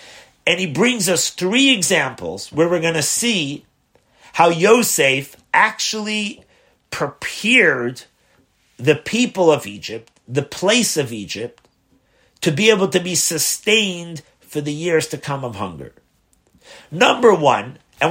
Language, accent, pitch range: English, American, 120-170 Hz